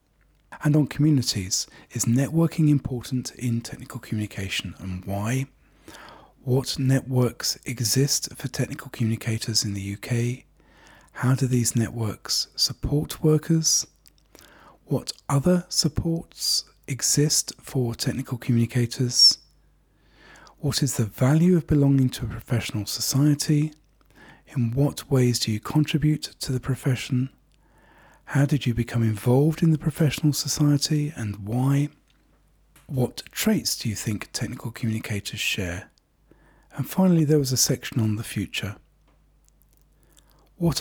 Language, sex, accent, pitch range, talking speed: English, male, British, 115-145 Hz, 120 wpm